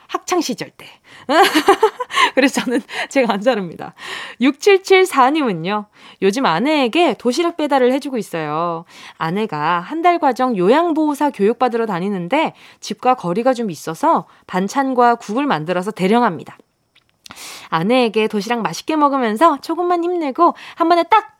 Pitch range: 200-300 Hz